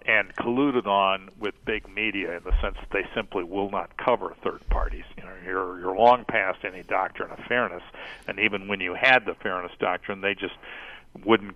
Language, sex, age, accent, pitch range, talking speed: English, male, 50-69, American, 100-125 Hz, 195 wpm